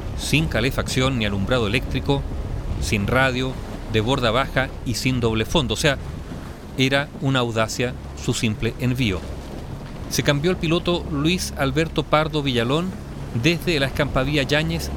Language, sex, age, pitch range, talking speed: Spanish, male, 40-59, 110-150 Hz, 135 wpm